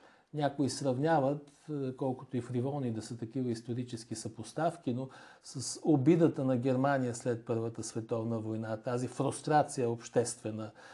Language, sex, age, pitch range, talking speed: Bulgarian, male, 40-59, 125-160 Hz, 120 wpm